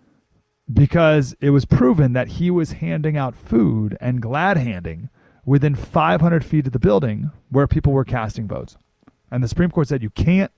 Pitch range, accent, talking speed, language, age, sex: 125-175 Hz, American, 175 wpm, English, 30-49, male